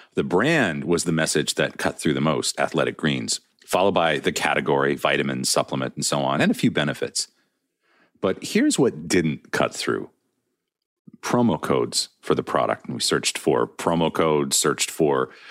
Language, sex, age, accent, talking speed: English, male, 40-59, American, 170 wpm